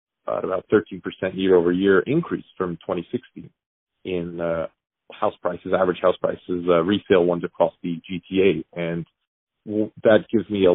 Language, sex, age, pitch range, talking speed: English, male, 30-49, 85-105 Hz, 150 wpm